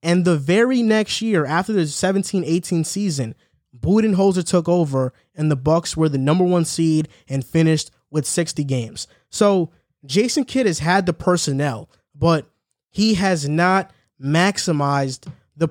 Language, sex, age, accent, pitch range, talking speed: English, male, 20-39, American, 145-180 Hz, 145 wpm